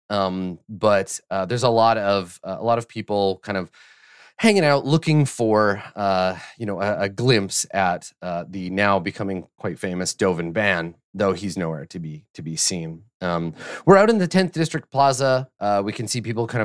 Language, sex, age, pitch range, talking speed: English, male, 30-49, 90-115 Hz, 200 wpm